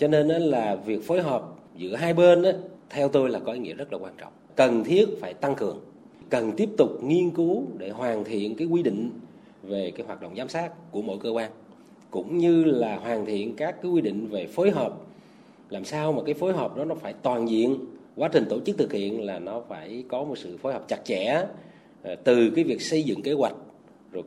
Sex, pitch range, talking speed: male, 115-180 Hz, 225 wpm